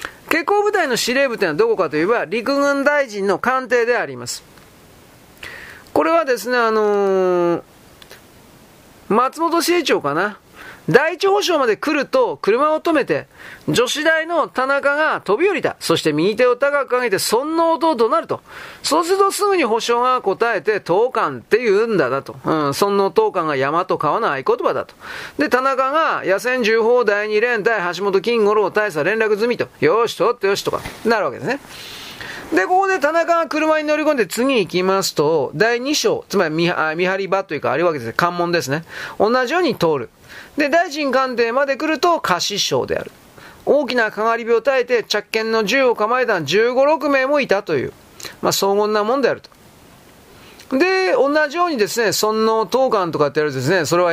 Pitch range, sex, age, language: 205-320 Hz, male, 40-59, Japanese